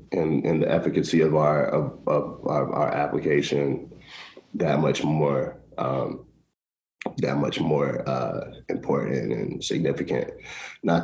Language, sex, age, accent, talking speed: English, male, 30-49, American, 125 wpm